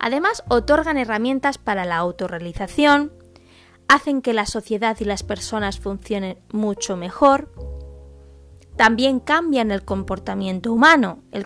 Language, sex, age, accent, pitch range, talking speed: Spanish, female, 20-39, Spanish, 195-275 Hz, 115 wpm